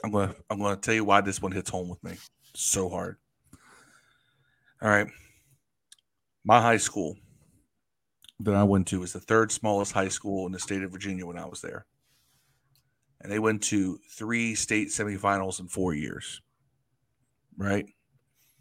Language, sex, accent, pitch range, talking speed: English, male, American, 110-135 Hz, 165 wpm